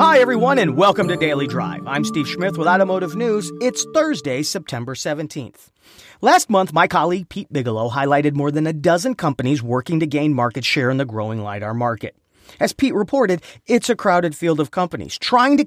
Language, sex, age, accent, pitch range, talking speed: English, male, 40-59, American, 140-200 Hz, 190 wpm